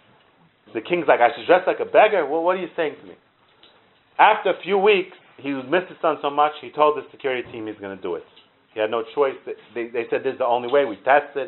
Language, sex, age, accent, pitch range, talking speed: English, male, 40-59, American, 130-225 Hz, 260 wpm